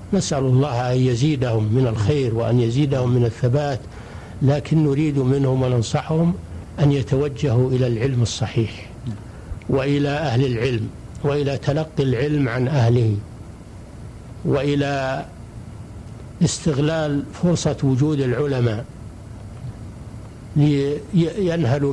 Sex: male